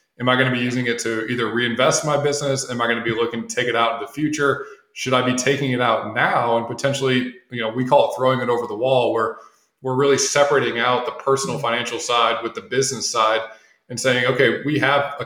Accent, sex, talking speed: American, male, 250 wpm